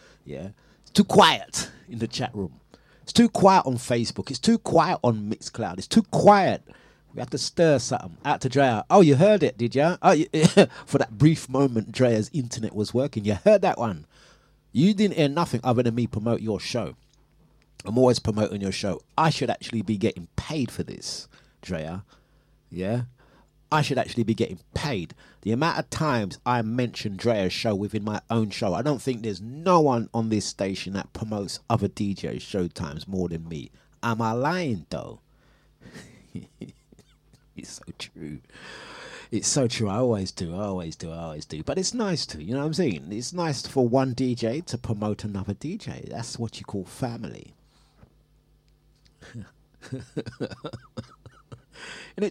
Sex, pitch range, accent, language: male, 105-150 Hz, British, English